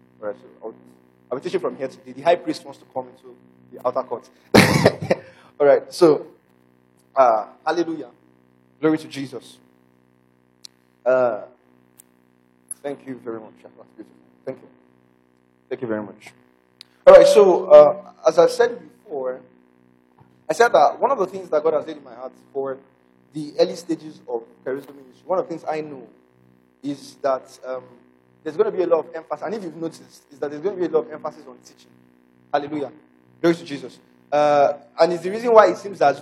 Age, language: 20-39, English